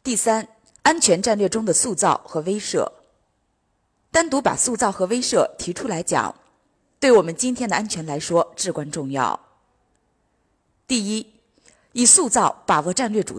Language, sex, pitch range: Chinese, female, 180-245 Hz